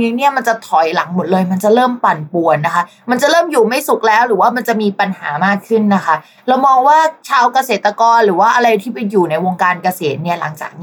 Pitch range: 185-245 Hz